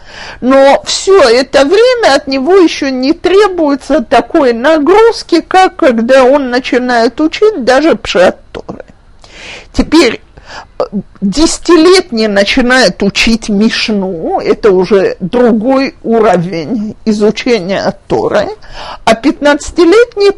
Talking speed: 90 wpm